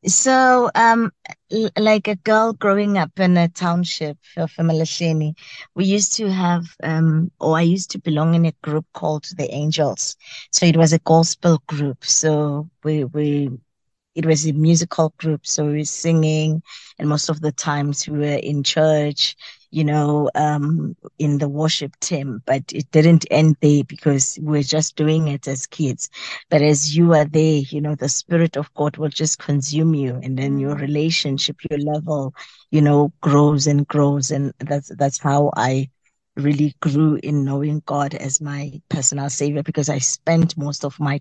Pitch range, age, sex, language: 145-165 Hz, 20-39, female, English